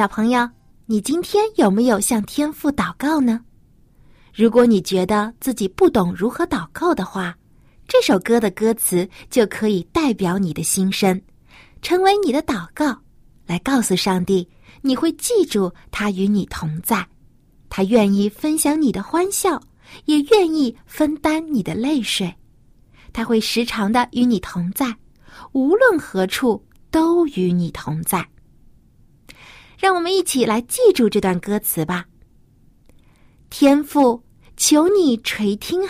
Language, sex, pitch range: Chinese, female, 185-285 Hz